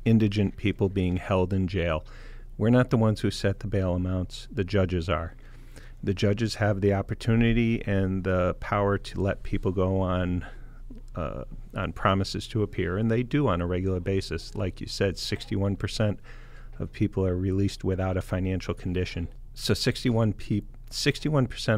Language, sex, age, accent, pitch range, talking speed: English, male, 40-59, American, 95-120 Hz, 165 wpm